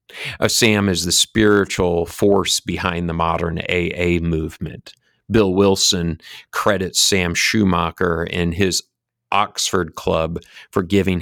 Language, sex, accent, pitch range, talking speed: English, male, American, 90-115 Hz, 120 wpm